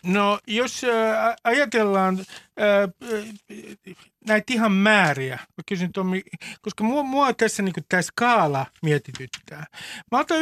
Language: Finnish